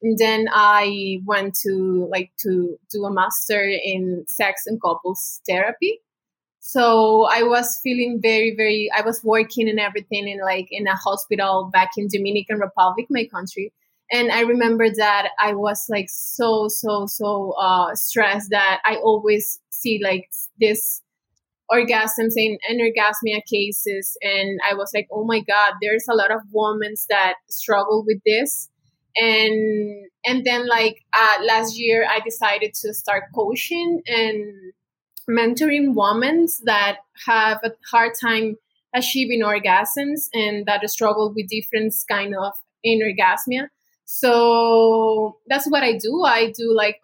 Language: English